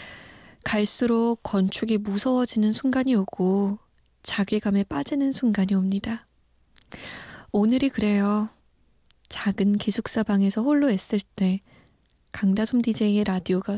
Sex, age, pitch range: female, 20-39, 195-235 Hz